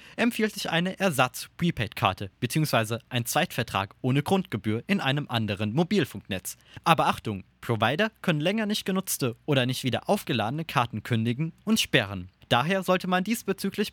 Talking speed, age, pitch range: 140 wpm, 20-39, 115-175 Hz